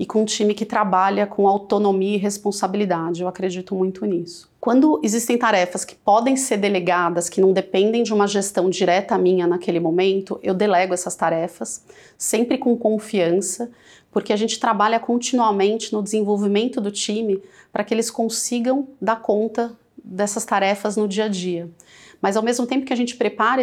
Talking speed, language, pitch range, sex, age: 170 wpm, Portuguese, 195-230 Hz, female, 30-49